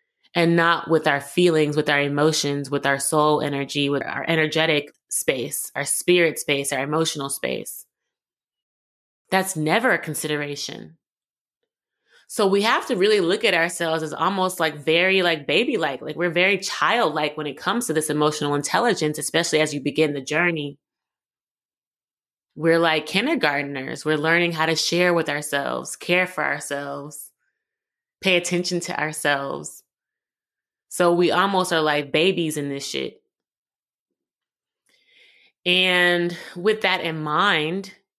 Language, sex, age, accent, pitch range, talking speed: English, female, 20-39, American, 150-180 Hz, 140 wpm